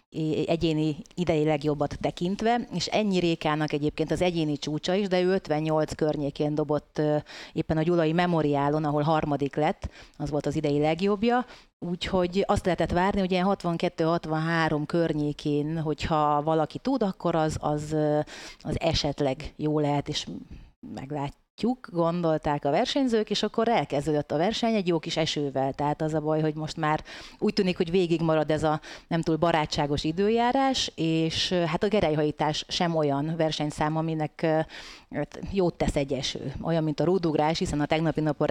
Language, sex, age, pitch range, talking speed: Hungarian, female, 30-49, 150-175 Hz, 155 wpm